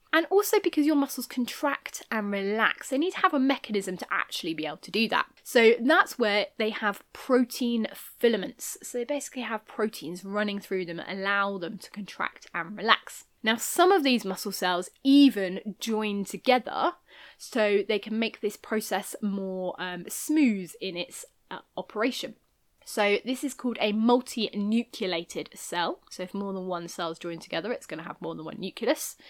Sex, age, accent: female, 20-39, British